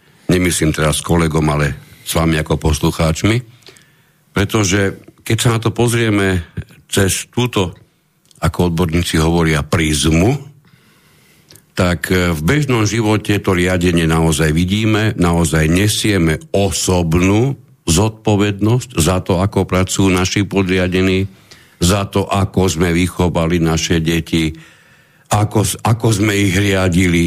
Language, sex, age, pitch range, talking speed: Slovak, male, 60-79, 80-115 Hz, 110 wpm